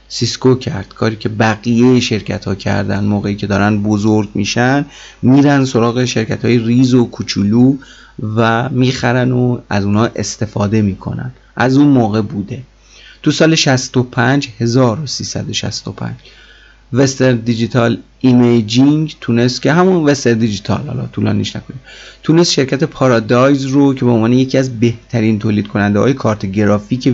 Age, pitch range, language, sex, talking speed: 30-49, 110-135 Hz, Persian, male, 135 wpm